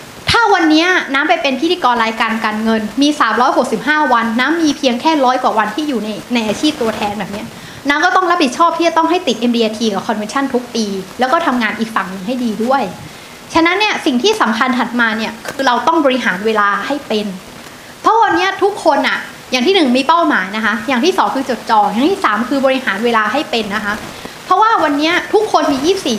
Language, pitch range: Thai, 235-325 Hz